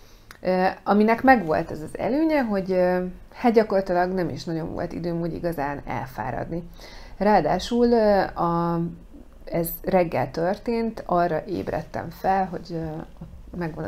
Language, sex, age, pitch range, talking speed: Hungarian, female, 30-49, 160-185 Hz, 110 wpm